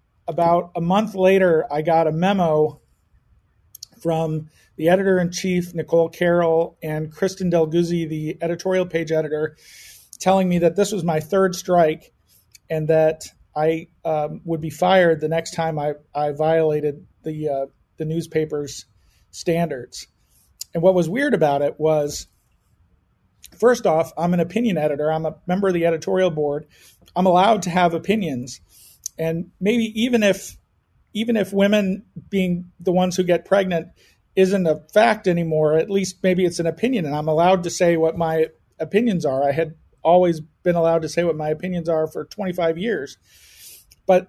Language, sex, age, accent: English, male, 40-59, American